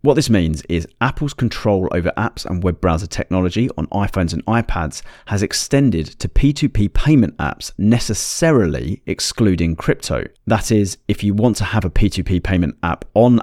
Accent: British